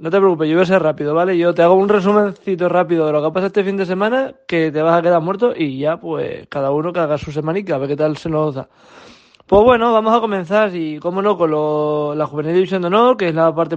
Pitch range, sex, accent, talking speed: 165-210 Hz, male, Spanish, 290 wpm